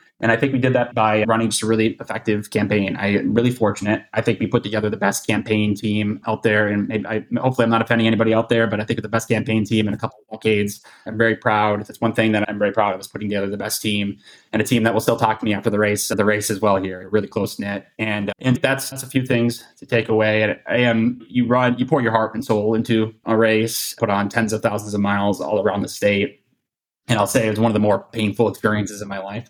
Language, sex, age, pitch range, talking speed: English, male, 20-39, 105-115 Hz, 280 wpm